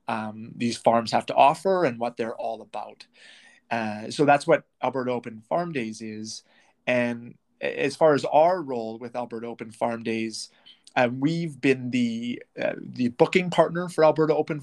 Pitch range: 115-140 Hz